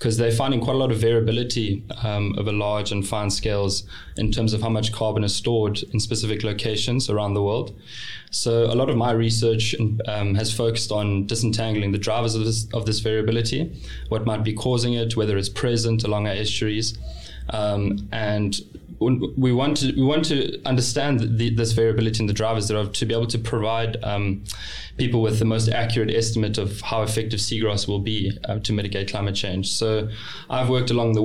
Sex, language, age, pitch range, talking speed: male, English, 20-39, 105-120 Hz, 195 wpm